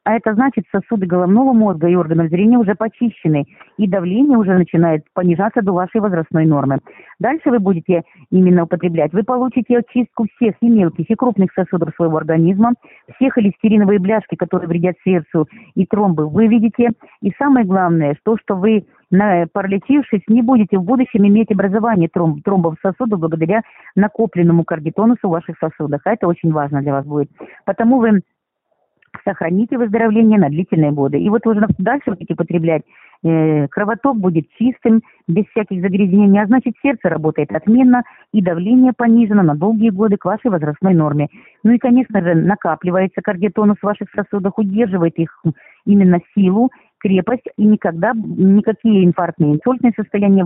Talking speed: 155 wpm